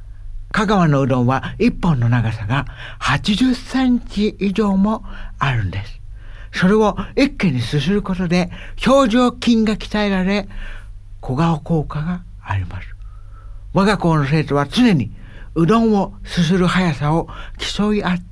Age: 60-79